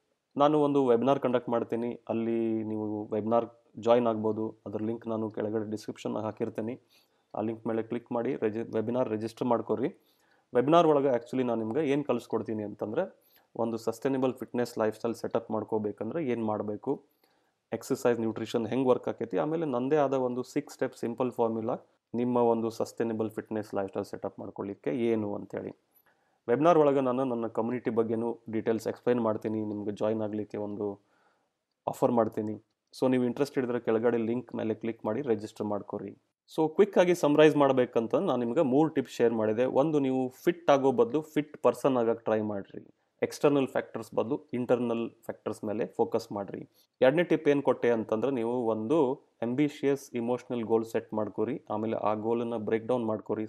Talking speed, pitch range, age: 155 wpm, 110-130 Hz, 30-49